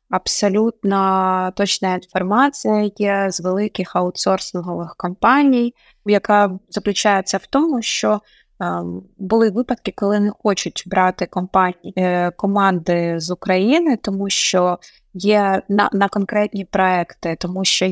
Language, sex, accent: Ukrainian, female, native